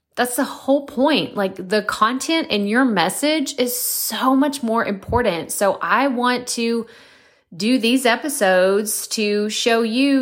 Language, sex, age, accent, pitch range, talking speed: English, female, 20-39, American, 180-240 Hz, 145 wpm